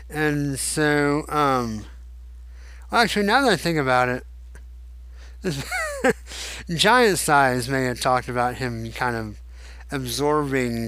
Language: English